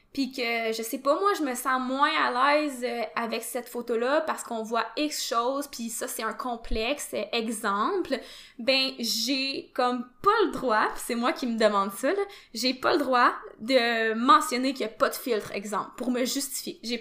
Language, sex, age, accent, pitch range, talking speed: French, female, 20-39, Canadian, 230-290 Hz, 200 wpm